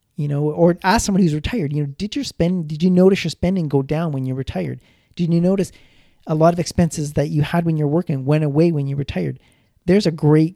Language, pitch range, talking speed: English, 150-180 Hz, 245 wpm